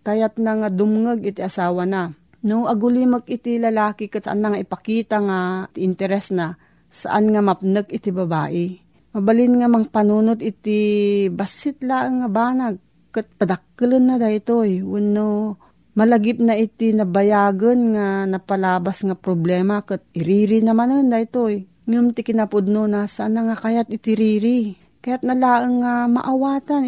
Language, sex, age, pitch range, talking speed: Filipino, female, 40-59, 185-225 Hz, 145 wpm